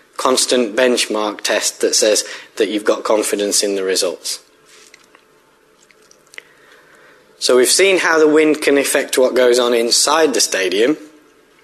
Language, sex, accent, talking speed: English, male, British, 135 wpm